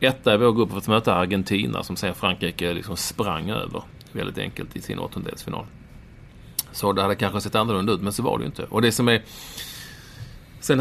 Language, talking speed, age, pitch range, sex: English, 205 wpm, 30-49, 100-120 Hz, male